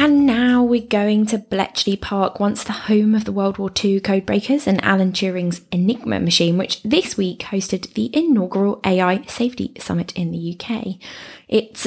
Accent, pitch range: British, 190-235 Hz